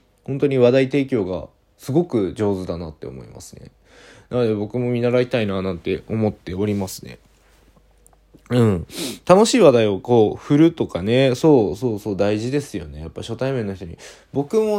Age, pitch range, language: 20-39, 100-135 Hz, Japanese